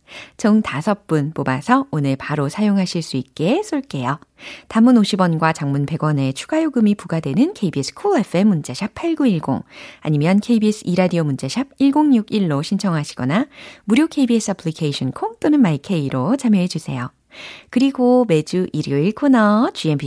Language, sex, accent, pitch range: Korean, female, native, 155-260 Hz